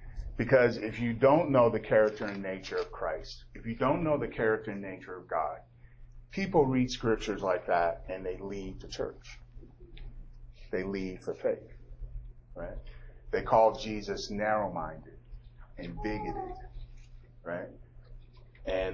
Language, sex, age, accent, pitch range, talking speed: English, male, 40-59, American, 85-120 Hz, 140 wpm